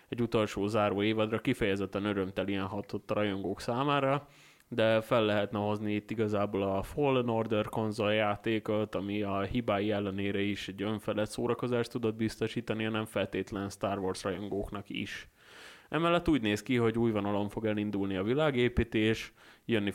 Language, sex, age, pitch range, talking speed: Hungarian, male, 20-39, 100-115 Hz, 150 wpm